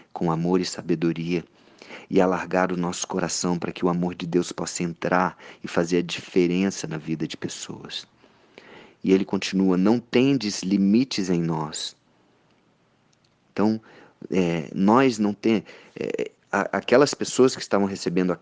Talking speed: 145 wpm